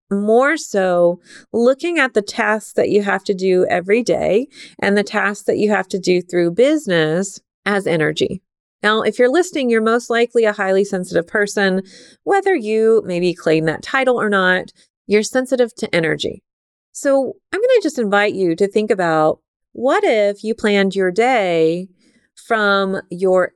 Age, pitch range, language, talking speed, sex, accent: 30-49, 185-235 Hz, English, 170 wpm, female, American